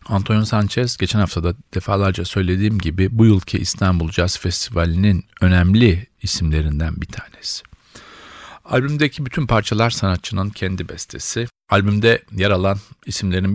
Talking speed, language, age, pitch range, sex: 120 wpm, Turkish, 50-69, 90-110 Hz, male